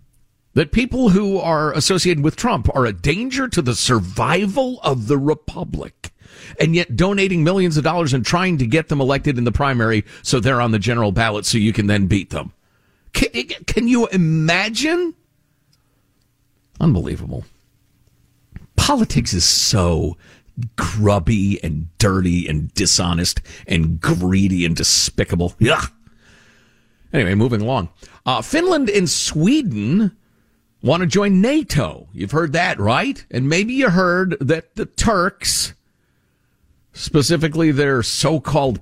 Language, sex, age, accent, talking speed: English, male, 50-69, American, 130 wpm